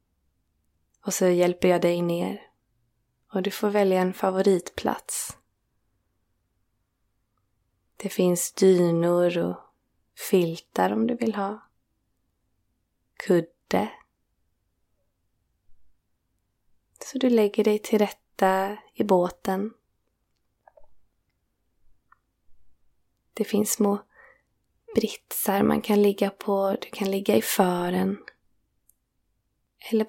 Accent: native